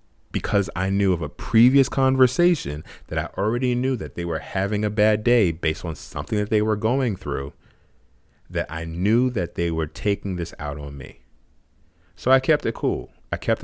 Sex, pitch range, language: male, 80-105 Hz, English